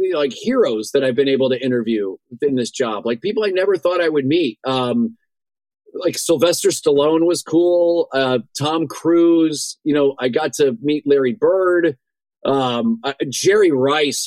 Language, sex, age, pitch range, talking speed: English, male, 30-49, 135-190 Hz, 170 wpm